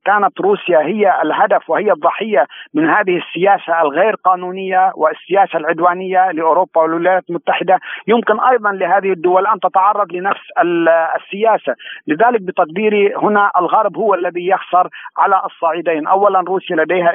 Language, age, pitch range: Arabic, 50-69, 160-185 Hz